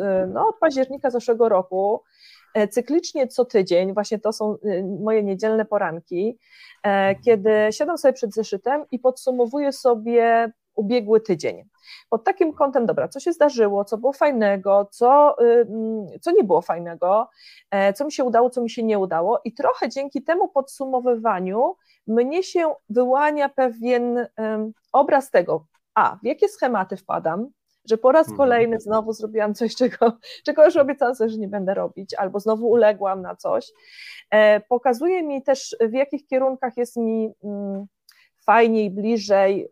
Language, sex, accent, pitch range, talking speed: Polish, female, native, 215-270 Hz, 145 wpm